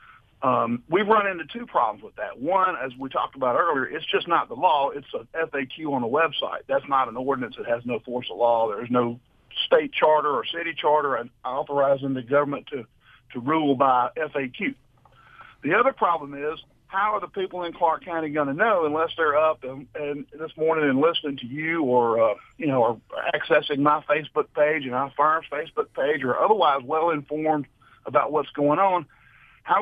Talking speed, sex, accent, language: 195 wpm, male, American, English